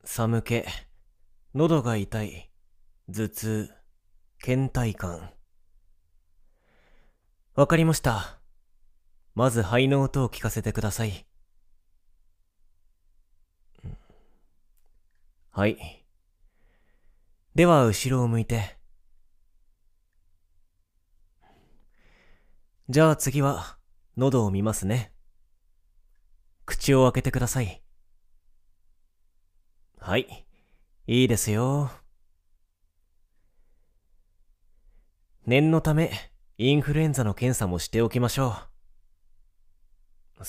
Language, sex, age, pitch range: Japanese, male, 30-49, 85-120 Hz